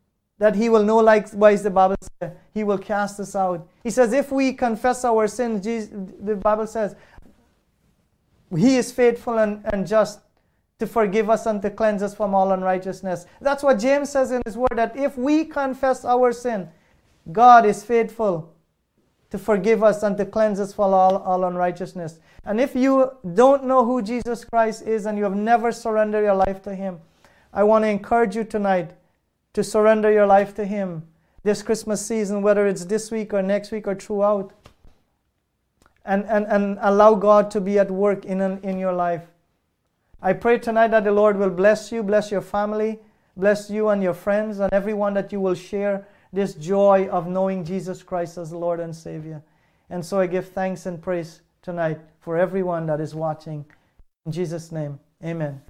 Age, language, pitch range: 30-49, English, 185-220 Hz